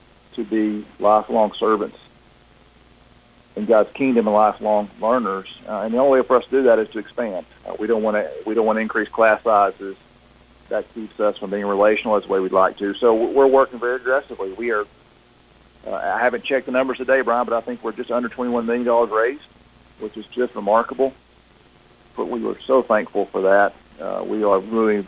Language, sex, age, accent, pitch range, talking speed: English, male, 50-69, American, 105-120 Hz, 210 wpm